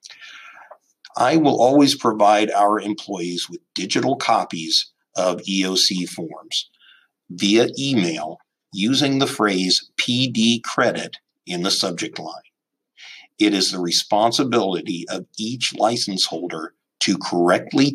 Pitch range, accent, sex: 95-120 Hz, American, male